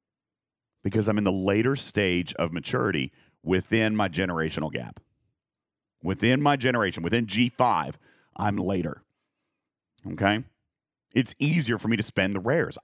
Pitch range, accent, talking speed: 105-155 Hz, American, 130 wpm